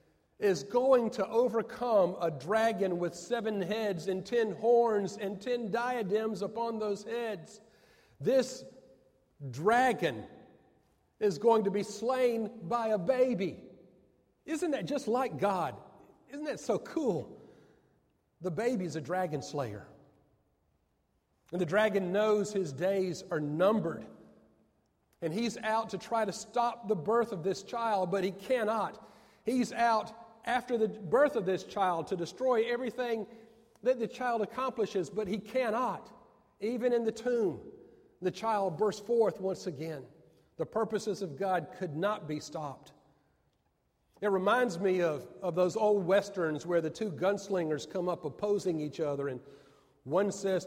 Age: 50-69